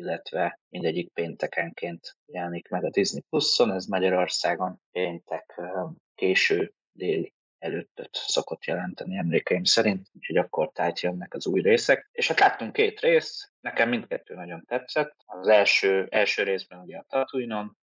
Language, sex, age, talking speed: Hungarian, male, 20-39, 140 wpm